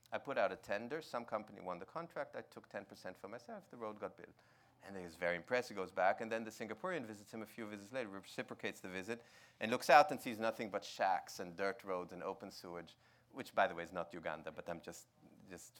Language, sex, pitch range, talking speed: English, male, 95-120 Hz, 245 wpm